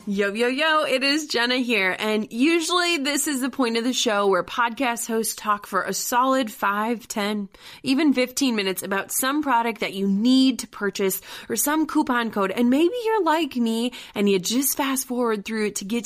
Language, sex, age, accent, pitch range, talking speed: English, female, 30-49, American, 200-260 Hz, 200 wpm